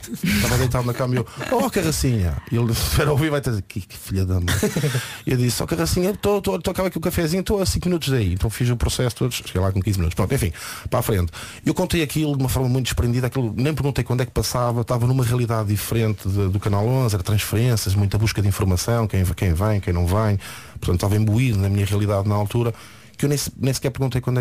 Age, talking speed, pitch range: 20-39, 235 wpm, 105-125 Hz